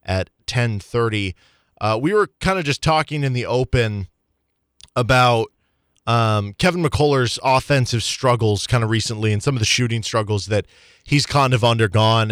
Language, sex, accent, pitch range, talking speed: English, male, American, 110-130 Hz, 155 wpm